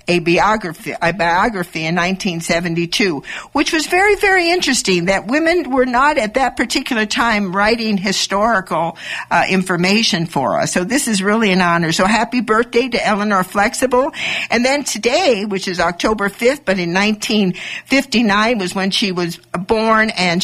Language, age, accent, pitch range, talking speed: English, 60-79, American, 175-235 Hz, 155 wpm